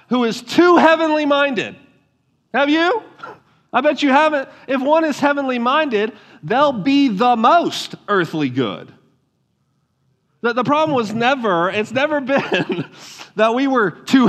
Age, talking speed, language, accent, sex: 40-59, 135 wpm, English, American, male